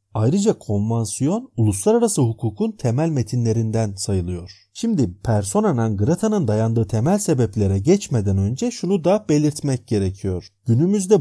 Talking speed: 105 wpm